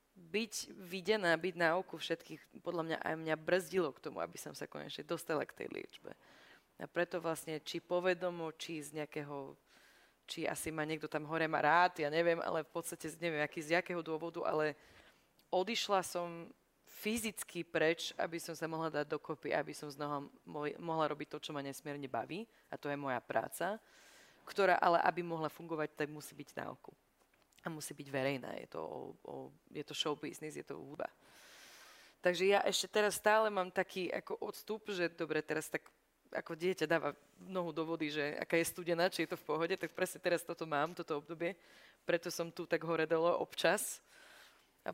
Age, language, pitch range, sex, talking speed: 20-39, Slovak, 150-175 Hz, female, 185 wpm